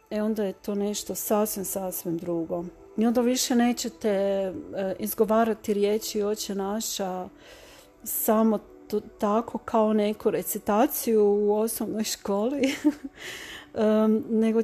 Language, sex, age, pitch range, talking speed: Croatian, female, 40-59, 195-230 Hz, 105 wpm